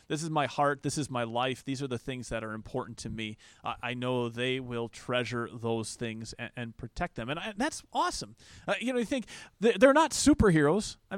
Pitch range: 130-185 Hz